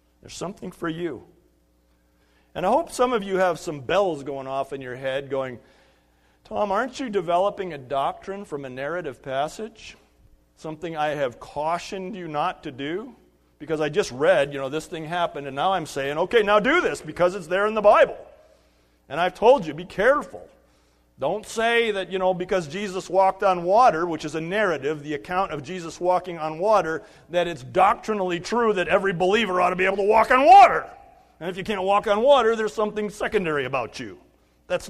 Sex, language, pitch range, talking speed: male, English, 145-210 Hz, 200 wpm